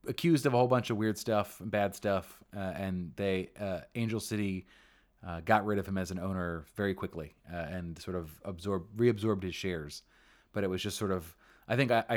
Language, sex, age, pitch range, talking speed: English, male, 30-49, 90-110 Hz, 215 wpm